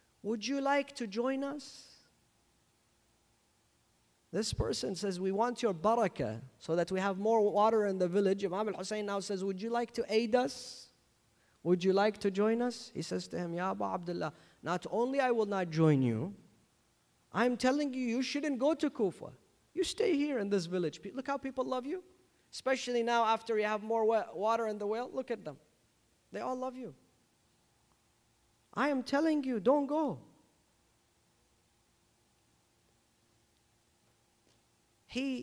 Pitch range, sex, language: 180-280 Hz, male, English